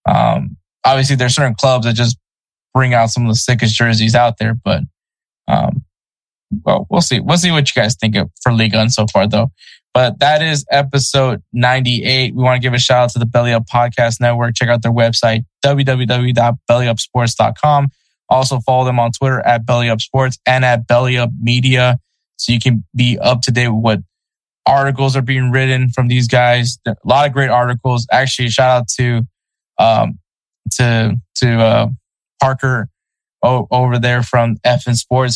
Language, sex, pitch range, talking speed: English, male, 115-125 Hz, 175 wpm